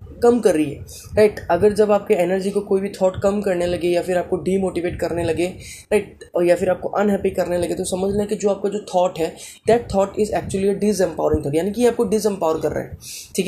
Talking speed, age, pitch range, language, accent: 235 wpm, 20-39, 175-210 Hz, Hindi, native